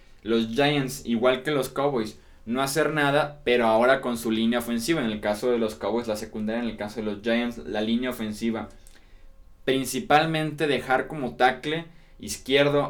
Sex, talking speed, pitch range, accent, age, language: male, 170 wpm, 110-125 Hz, Mexican, 20-39, Spanish